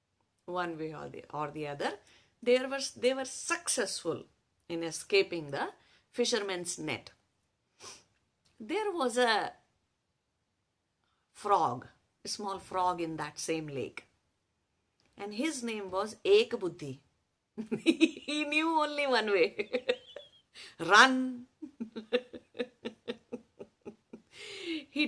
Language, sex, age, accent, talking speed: English, female, 50-69, Indian, 90 wpm